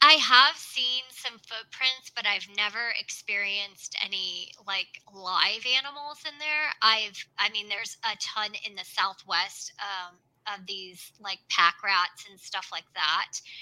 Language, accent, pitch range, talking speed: English, American, 185-235 Hz, 150 wpm